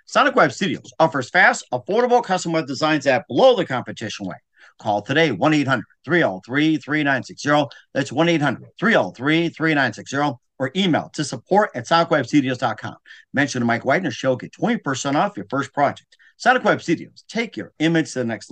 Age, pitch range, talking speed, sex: 50-69, 125-170 Hz, 140 wpm, male